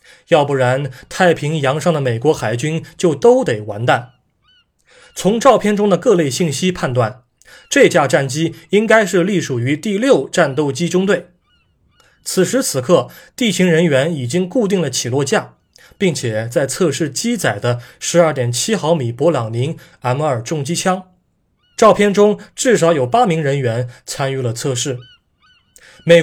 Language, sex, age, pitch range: Chinese, male, 20-39, 130-180 Hz